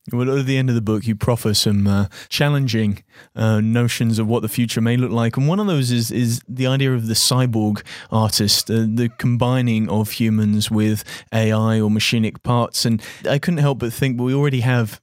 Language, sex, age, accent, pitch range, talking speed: English, male, 30-49, British, 110-125 Hz, 210 wpm